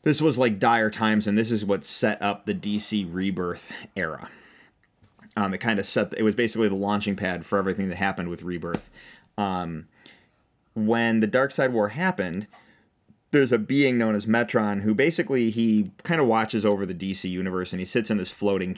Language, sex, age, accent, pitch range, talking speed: English, male, 30-49, American, 95-115 Hz, 195 wpm